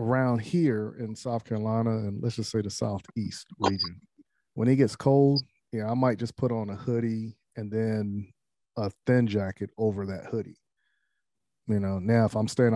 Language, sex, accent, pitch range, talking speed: English, male, American, 105-120 Hz, 180 wpm